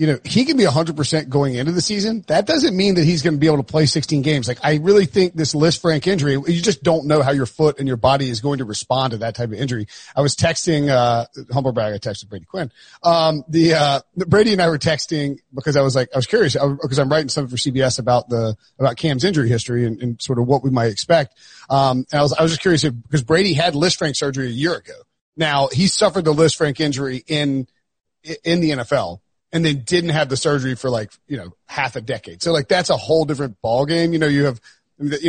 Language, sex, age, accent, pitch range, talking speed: English, male, 40-59, American, 130-160 Hz, 245 wpm